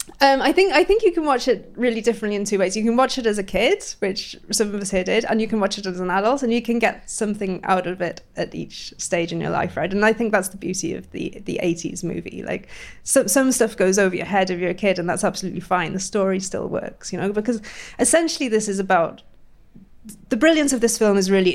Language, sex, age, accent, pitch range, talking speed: English, female, 20-39, British, 180-225 Hz, 265 wpm